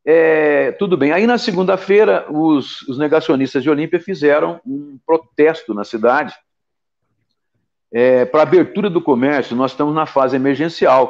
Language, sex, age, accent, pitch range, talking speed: Portuguese, male, 60-79, Brazilian, 135-200 Hz, 140 wpm